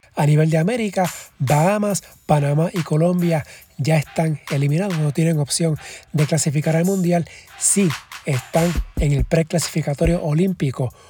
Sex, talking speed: male, 130 wpm